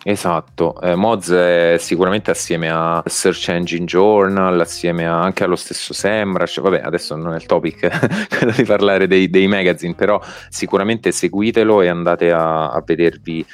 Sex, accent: male, native